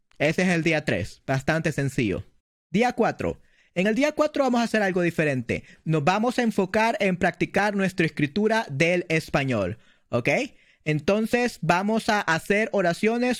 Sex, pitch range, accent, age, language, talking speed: male, 160-210 Hz, American, 30-49, Spanish, 150 wpm